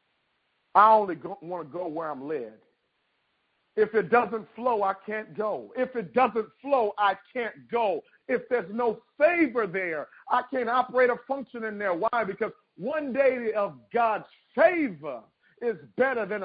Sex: male